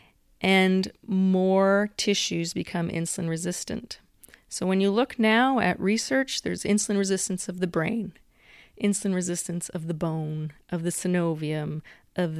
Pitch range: 165-200 Hz